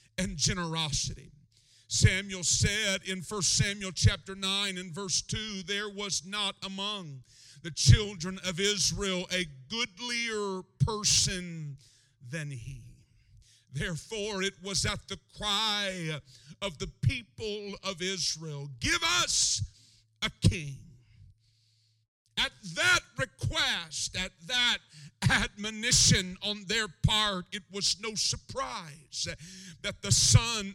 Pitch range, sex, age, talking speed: 130-205 Hz, male, 50-69, 110 wpm